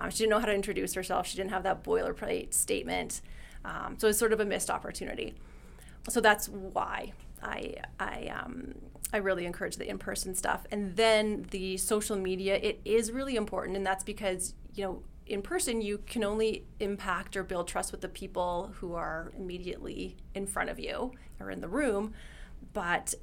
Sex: female